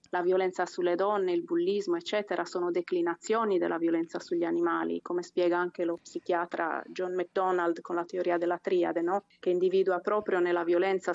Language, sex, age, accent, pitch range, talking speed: English, female, 30-49, Italian, 175-195 Hz, 165 wpm